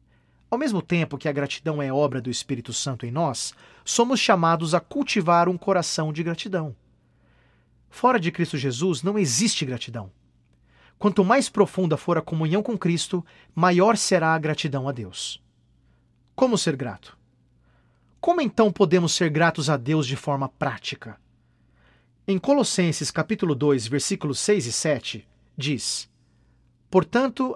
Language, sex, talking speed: Portuguese, male, 140 wpm